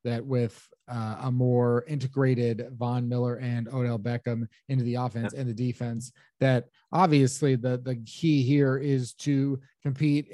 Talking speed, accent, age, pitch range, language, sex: 150 wpm, American, 30-49, 120-140 Hz, English, male